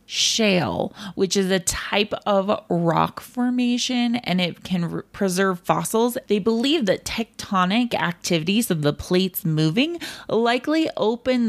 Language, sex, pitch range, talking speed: English, female, 165-220 Hz, 130 wpm